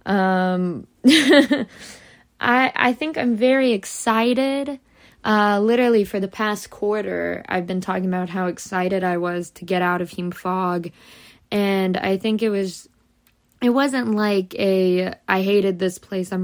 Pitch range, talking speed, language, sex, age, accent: 180-210 Hz, 150 wpm, English, female, 20-39, American